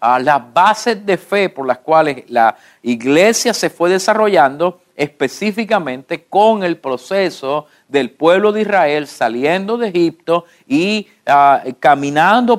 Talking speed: 130 wpm